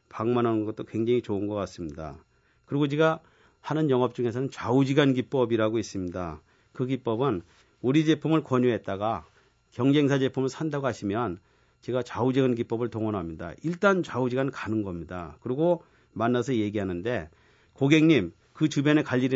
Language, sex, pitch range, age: Korean, male, 110-140 Hz, 40-59